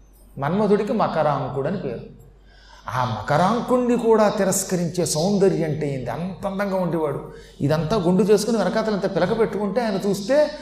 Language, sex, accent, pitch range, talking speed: Telugu, male, native, 155-215 Hz, 120 wpm